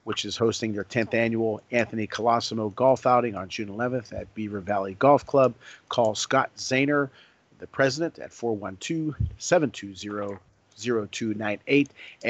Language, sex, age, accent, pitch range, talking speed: English, male, 40-59, American, 105-125 Hz, 120 wpm